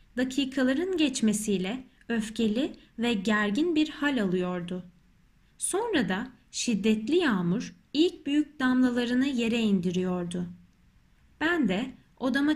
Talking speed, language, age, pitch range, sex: 95 wpm, Turkish, 30-49, 210-275 Hz, female